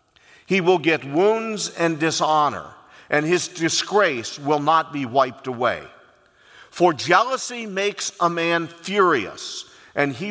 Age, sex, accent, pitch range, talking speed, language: 50-69, male, American, 145-195 Hz, 130 wpm, English